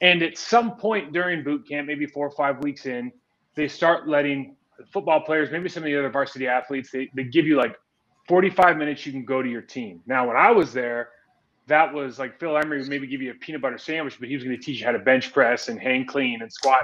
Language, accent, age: English, American, 30-49